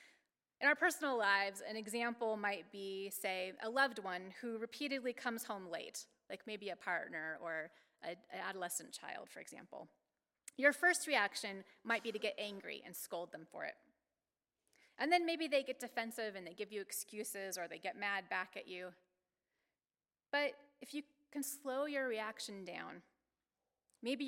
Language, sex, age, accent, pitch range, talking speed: English, female, 30-49, American, 190-260 Hz, 165 wpm